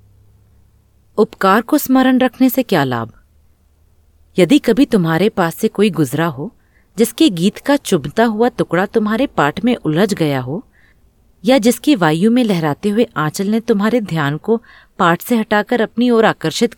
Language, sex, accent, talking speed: Hindi, female, native, 155 wpm